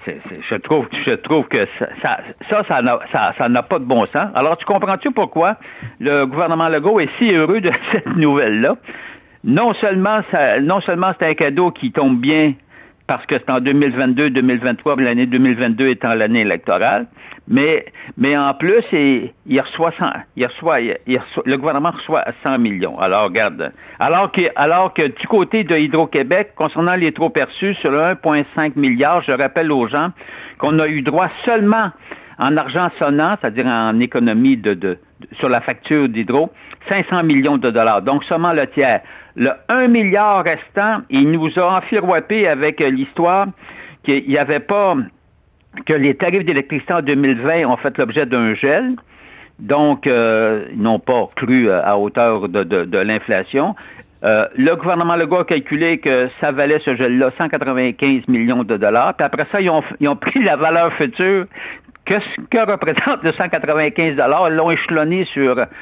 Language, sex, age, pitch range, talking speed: French, male, 60-79, 135-185 Hz, 170 wpm